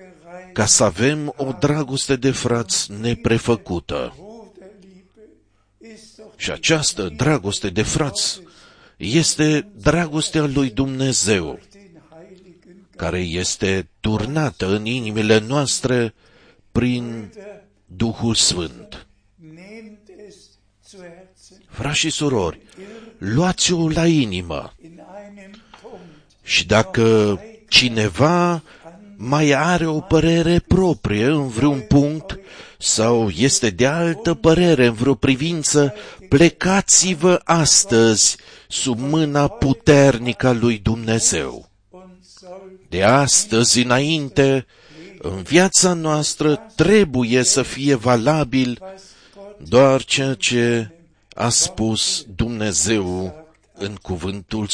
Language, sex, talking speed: Romanian, male, 85 wpm